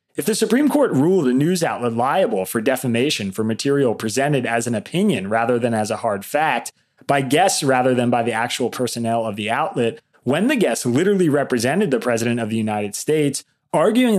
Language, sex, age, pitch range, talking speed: English, male, 30-49, 120-165 Hz, 195 wpm